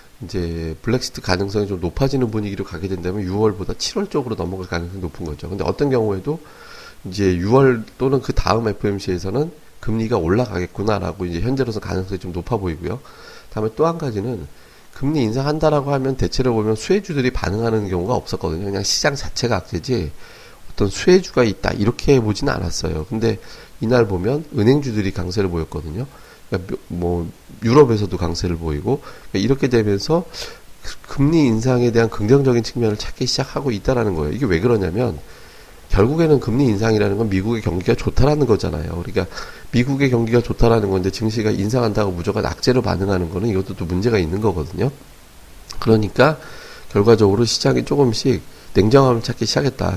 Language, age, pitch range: Korean, 40-59, 95-130 Hz